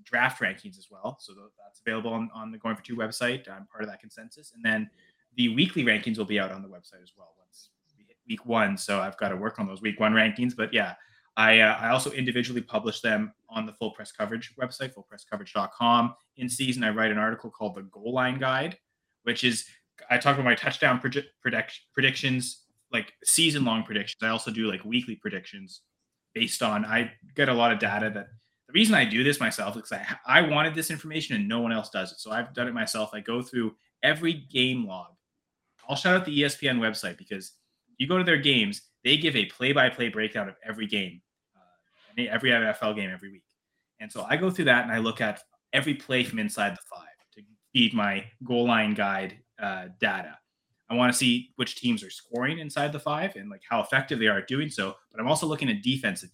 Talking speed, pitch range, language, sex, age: 220 wpm, 110-155 Hz, English, male, 20-39